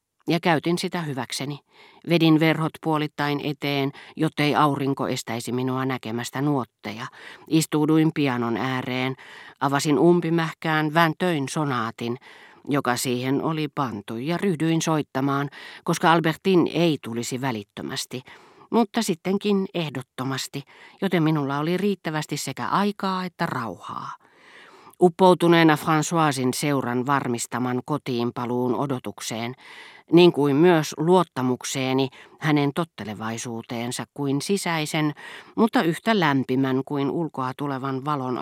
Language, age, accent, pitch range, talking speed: Finnish, 40-59, native, 130-160 Hz, 100 wpm